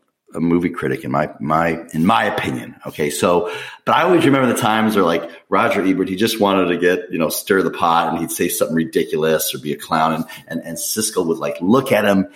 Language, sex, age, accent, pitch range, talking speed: English, male, 40-59, American, 80-110 Hz, 240 wpm